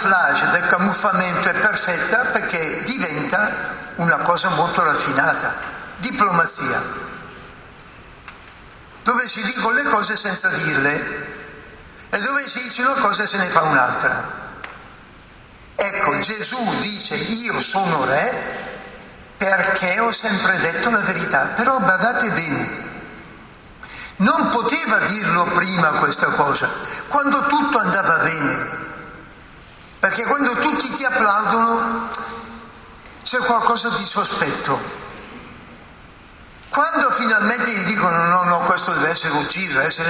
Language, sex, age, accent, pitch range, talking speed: Italian, male, 60-79, native, 185-245 Hz, 110 wpm